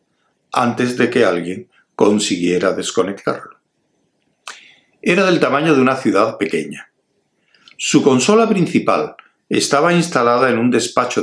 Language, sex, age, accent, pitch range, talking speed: Spanish, male, 60-79, Spanish, 115-175 Hz, 110 wpm